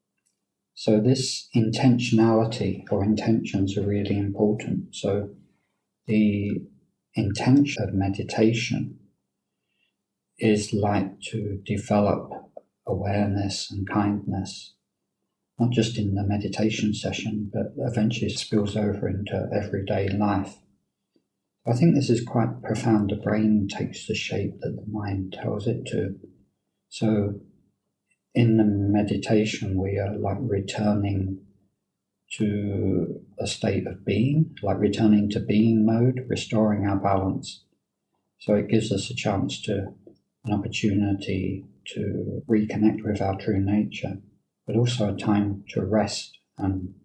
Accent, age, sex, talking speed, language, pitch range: British, 50-69, male, 120 wpm, English, 100-110 Hz